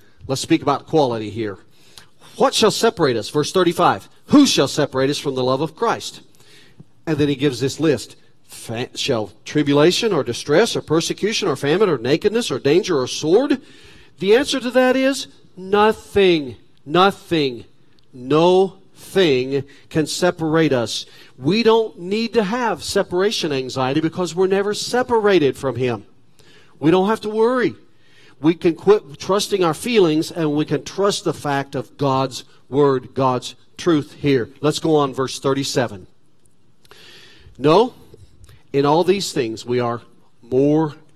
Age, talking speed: 40-59, 145 wpm